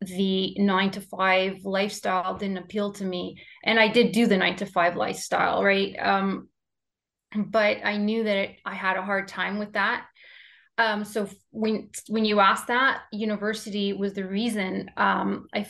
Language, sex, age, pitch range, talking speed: English, female, 20-39, 190-220 Hz, 170 wpm